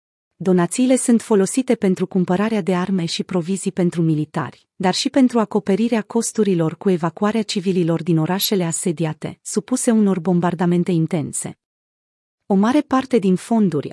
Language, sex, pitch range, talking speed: Romanian, female, 170-220 Hz, 135 wpm